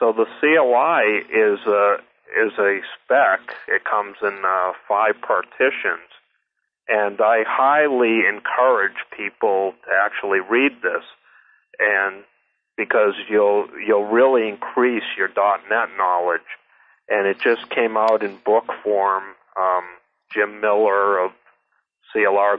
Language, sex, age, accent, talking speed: English, male, 40-59, American, 120 wpm